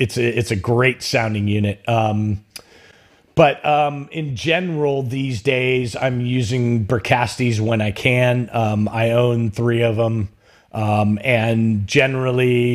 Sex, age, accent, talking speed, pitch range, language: male, 30-49, American, 130 wpm, 105-130 Hz, English